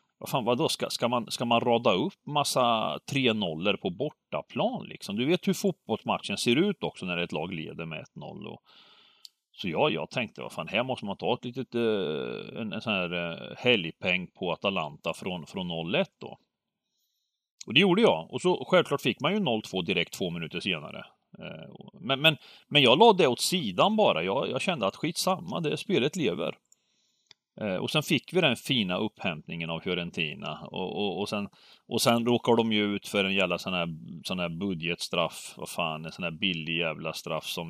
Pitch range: 85-125 Hz